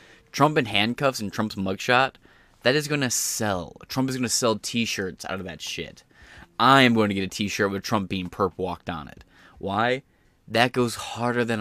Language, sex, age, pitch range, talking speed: English, male, 20-39, 100-130 Hz, 200 wpm